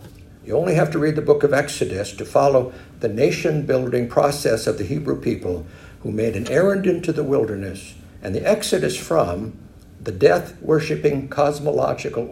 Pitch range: 90-145 Hz